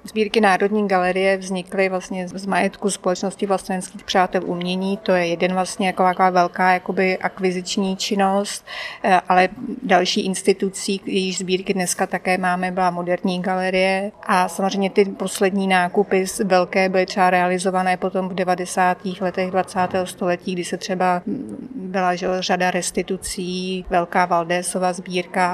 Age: 30-49